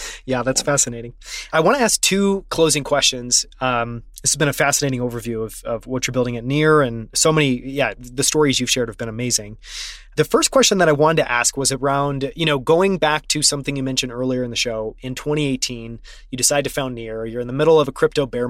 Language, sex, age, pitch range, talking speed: English, male, 20-39, 125-155 Hz, 235 wpm